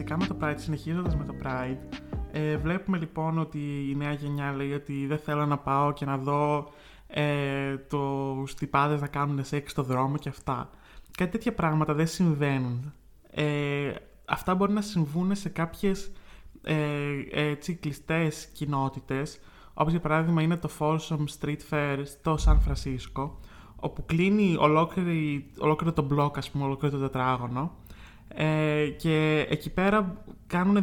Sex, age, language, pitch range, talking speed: male, 20-39, Greek, 140-165 Hz, 125 wpm